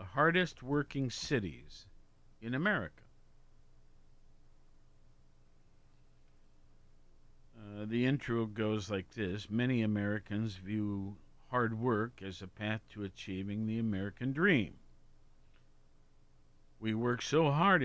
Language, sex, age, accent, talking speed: English, male, 50-69, American, 95 wpm